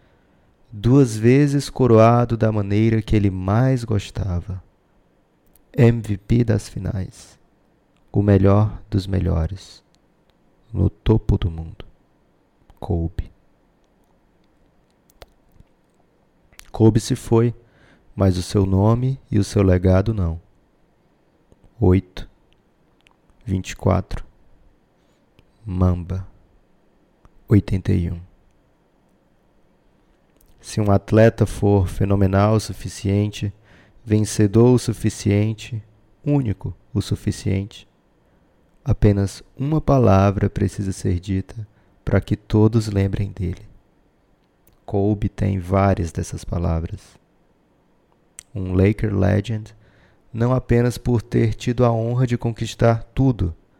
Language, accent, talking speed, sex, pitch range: Portuguese, Brazilian, 90 wpm, male, 95-115 Hz